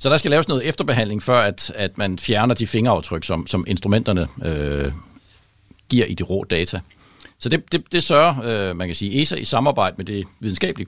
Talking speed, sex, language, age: 205 wpm, male, Danish, 60-79